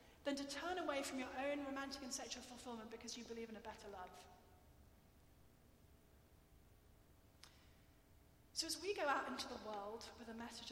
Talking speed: 160 wpm